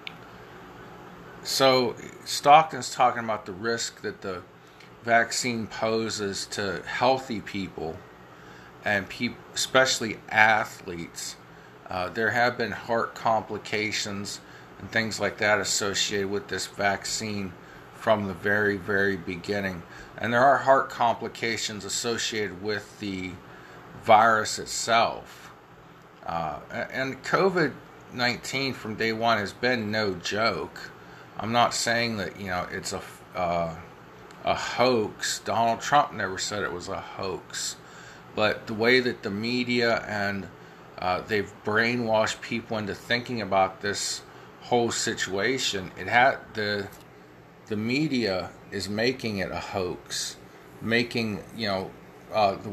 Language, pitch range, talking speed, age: English, 90-115 Hz, 125 wpm, 40-59